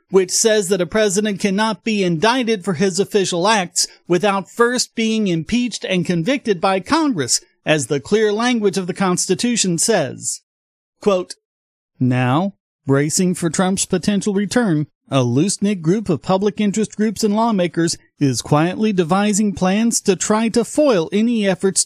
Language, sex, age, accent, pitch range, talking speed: English, male, 40-59, American, 170-230 Hz, 150 wpm